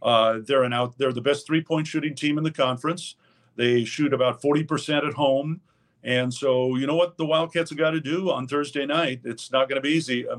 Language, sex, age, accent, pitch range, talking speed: English, male, 50-69, American, 120-145 Hz, 235 wpm